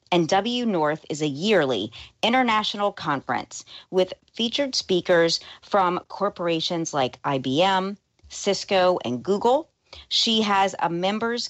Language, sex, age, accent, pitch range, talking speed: English, female, 40-59, American, 175-230 Hz, 115 wpm